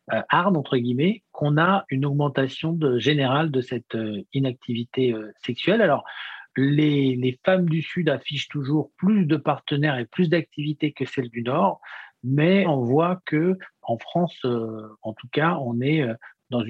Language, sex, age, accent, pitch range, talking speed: French, male, 50-69, French, 125-160 Hz, 155 wpm